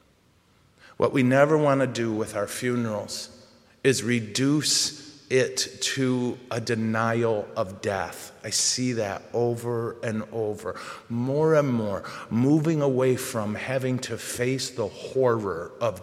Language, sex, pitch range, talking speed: English, male, 110-130 Hz, 130 wpm